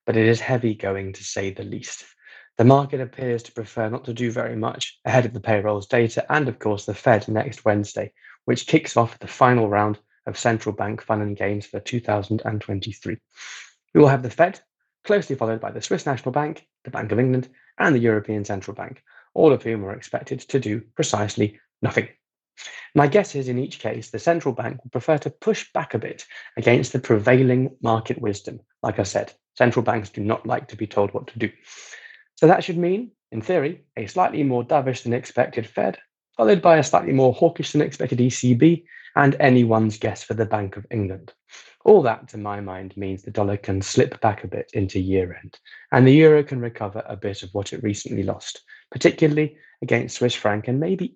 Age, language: 20-39, English